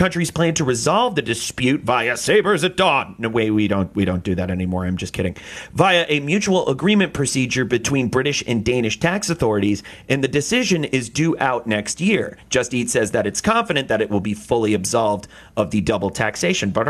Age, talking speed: 30-49, 210 wpm